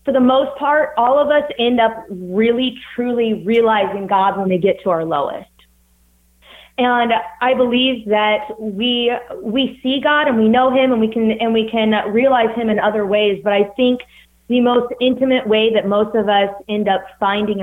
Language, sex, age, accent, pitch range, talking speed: English, female, 20-39, American, 185-225 Hz, 190 wpm